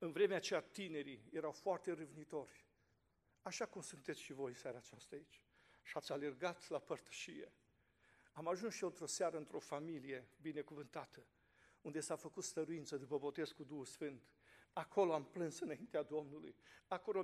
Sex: male